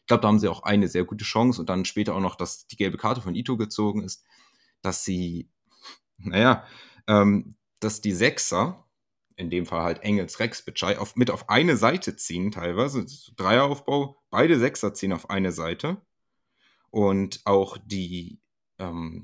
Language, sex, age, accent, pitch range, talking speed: German, male, 30-49, German, 95-125 Hz, 165 wpm